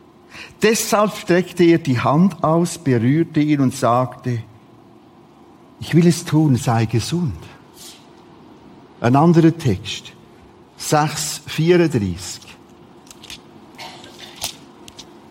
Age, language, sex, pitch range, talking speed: 50-69, German, male, 130-180 Hz, 80 wpm